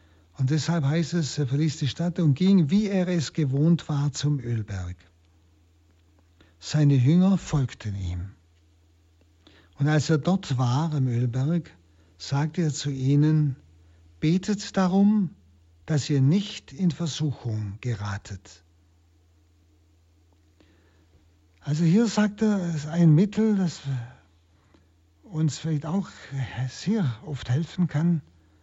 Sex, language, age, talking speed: male, German, 60-79, 115 wpm